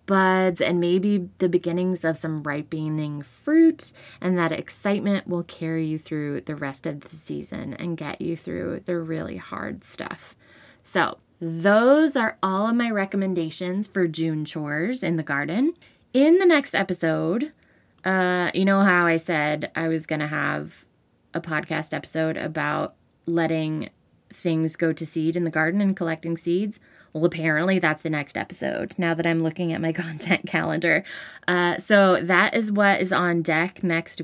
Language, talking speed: English, 165 wpm